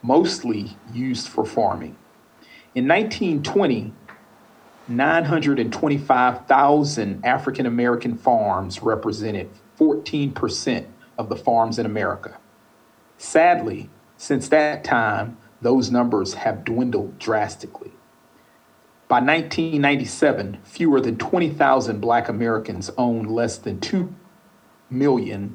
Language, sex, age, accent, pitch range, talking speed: English, male, 40-59, American, 115-140 Hz, 85 wpm